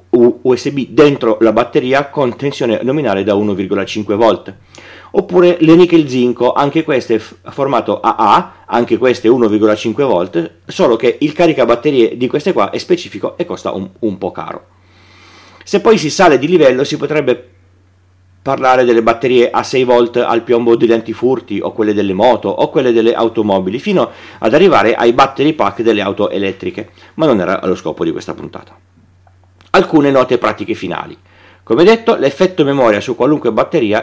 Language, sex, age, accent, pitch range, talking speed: Italian, male, 30-49, native, 100-140 Hz, 160 wpm